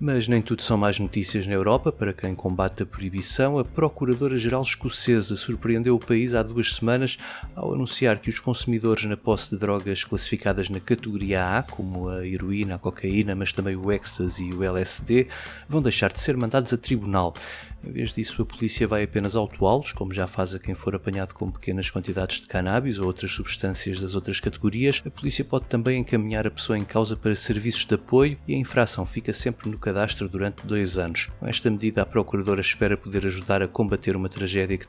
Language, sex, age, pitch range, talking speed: Portuguese, male, 20-39, 95-120 Hz, 200 wpm